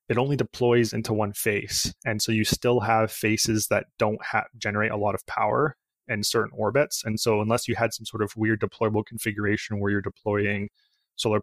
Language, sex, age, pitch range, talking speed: English, male, 20-39, 105-120 Hz, 195 wpm